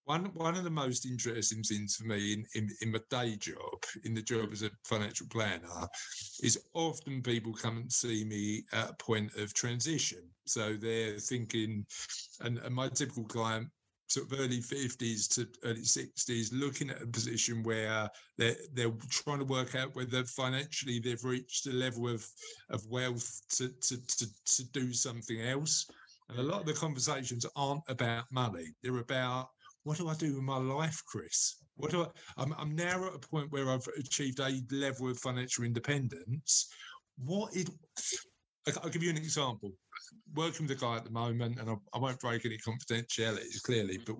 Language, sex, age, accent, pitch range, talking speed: English, male, 50-69, British, 115-140 Hz, 185 wpm